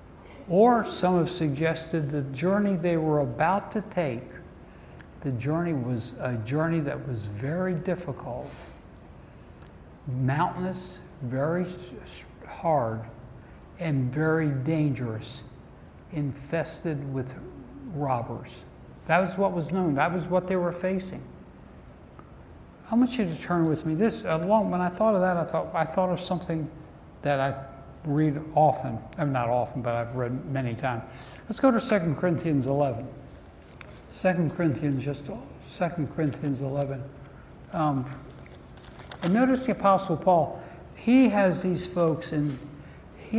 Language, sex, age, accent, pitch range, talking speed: English, male, 60-79, American, 130-175 Hz, 130 wpm